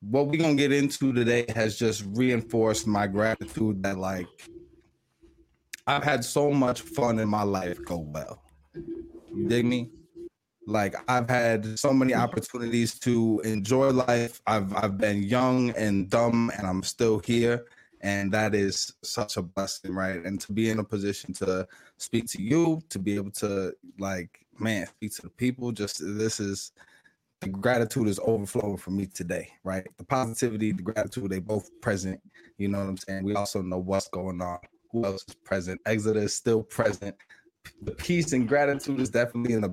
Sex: male